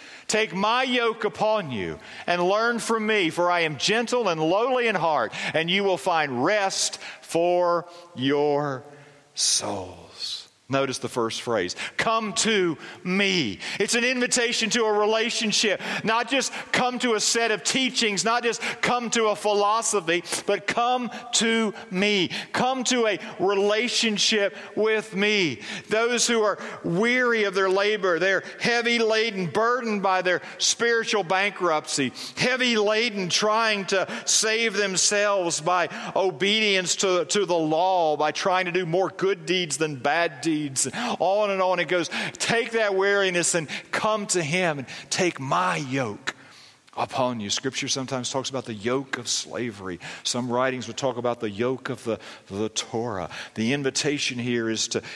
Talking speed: 155 wpm